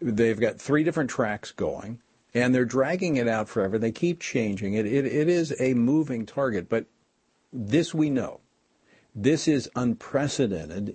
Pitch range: 110-130 Hz